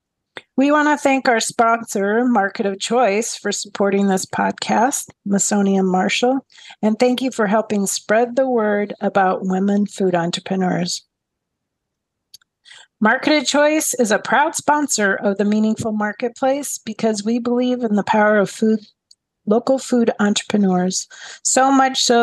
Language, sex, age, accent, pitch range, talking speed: English, female, 40-59, American, 195-235 Hz, 140 wpm